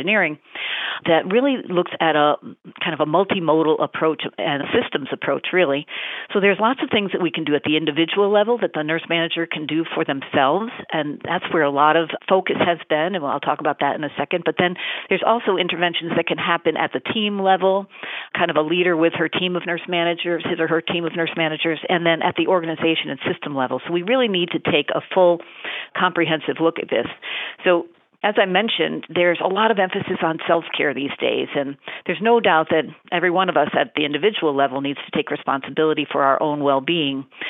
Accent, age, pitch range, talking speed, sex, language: American, 50-69, 150-180 Hz, 220 wpm, female, English